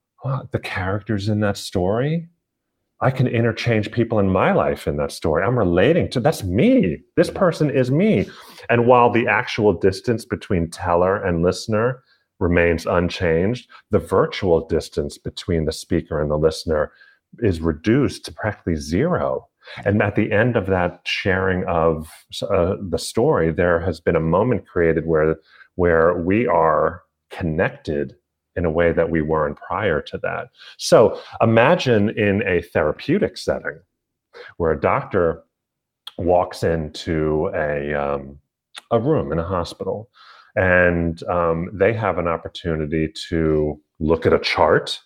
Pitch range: 80-110 Hz